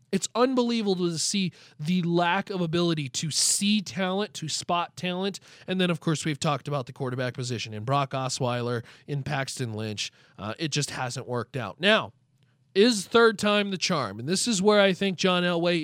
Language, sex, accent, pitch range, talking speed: English, male, American, 140-205 Hz, 190 wpm